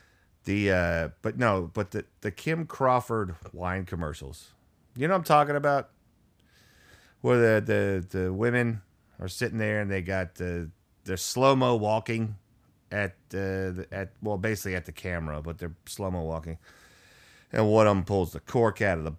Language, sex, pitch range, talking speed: English, male, 85-115 Hz, 180 wpm